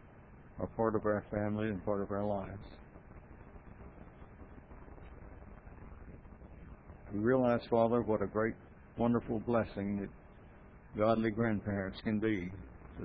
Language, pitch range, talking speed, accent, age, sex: English, 95-110 Hz, 110 wpm, American, 60-79, male